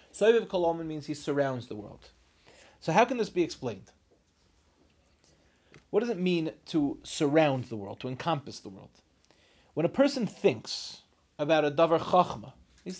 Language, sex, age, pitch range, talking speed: English, male, 30-49, 140-185 Hz, 155 wpm